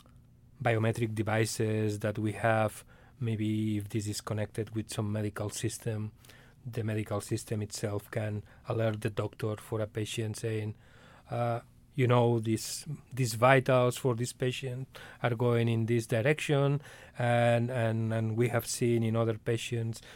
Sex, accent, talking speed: male, Spanish, 145 wpm